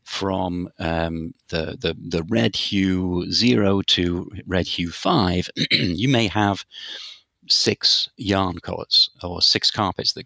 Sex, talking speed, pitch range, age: male, 130 wpm, 90-110 Hz, 50-69